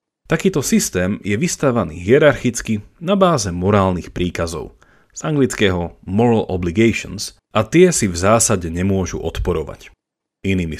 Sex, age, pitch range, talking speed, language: male, 40-59, 90-130 Hz, 115 wpm, Slovak